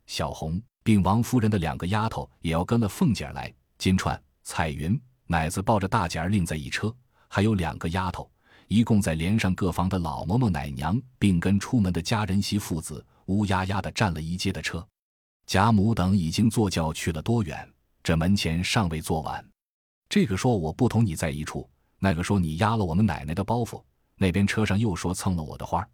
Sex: male